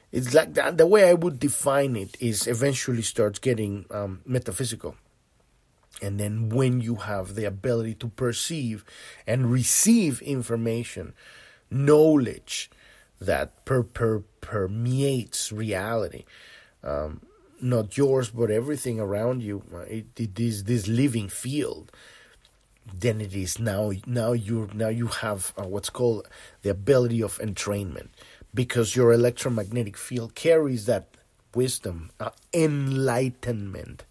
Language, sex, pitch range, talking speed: English, male, 105-130 Hz, 125 wpm